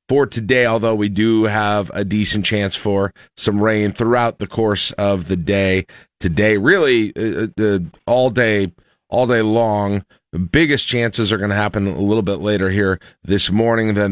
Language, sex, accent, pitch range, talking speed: English, male, American, 90-110 Hz, 180 wpm